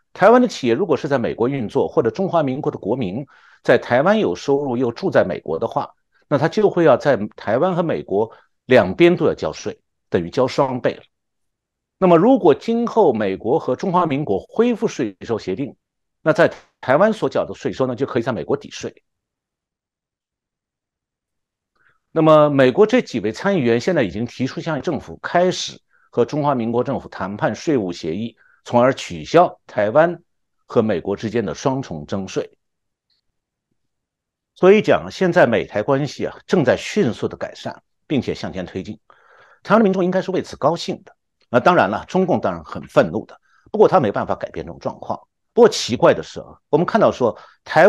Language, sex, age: Chinese, male, 50-69